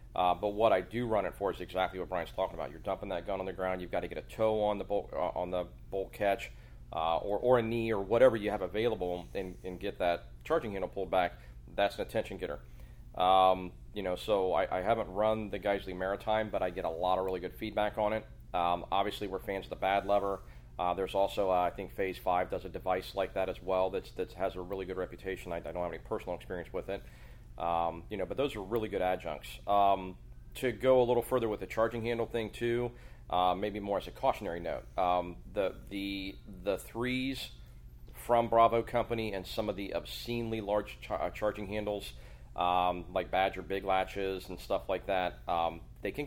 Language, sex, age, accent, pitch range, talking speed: English, male, 40-59, American, 90-105 Hz, 225 wpm